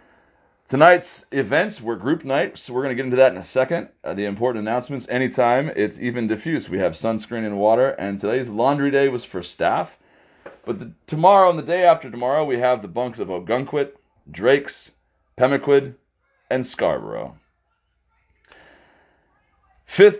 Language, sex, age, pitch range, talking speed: English, male, 30-49, 100-130 Hz, 160 wpm